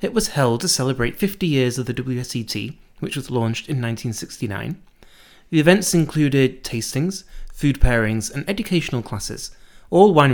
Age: 30-49